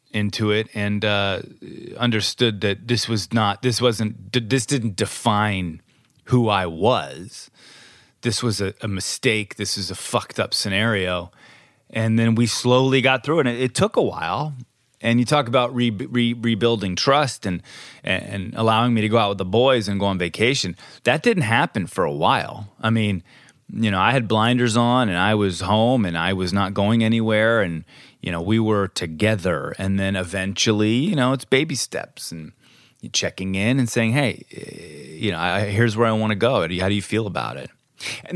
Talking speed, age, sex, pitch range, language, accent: 200 wpm, 30-49, male, 100-125 Hz, English, American